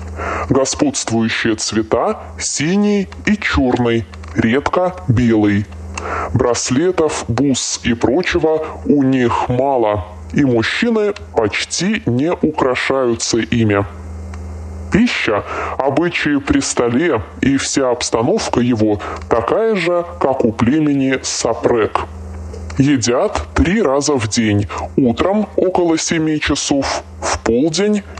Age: 20-39